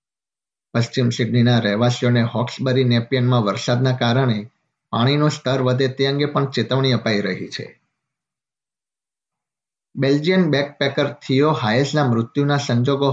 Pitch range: 120-135 Hz